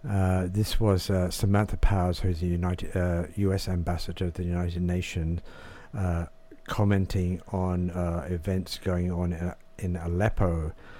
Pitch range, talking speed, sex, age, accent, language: 90-100 Hz, 140 wpm, male, 60-79, British, English